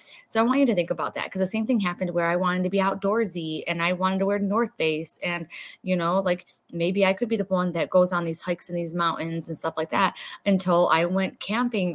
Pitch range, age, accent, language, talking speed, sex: 175-205 Hz, 20-39, American, English, 260 wpm, female